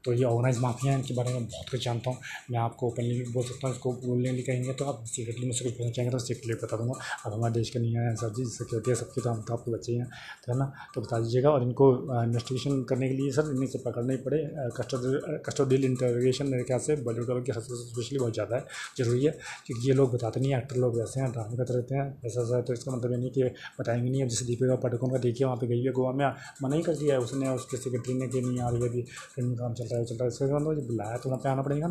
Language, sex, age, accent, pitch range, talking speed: Hindi, male, 20-39, native, 120-130 Hz, 250 wpm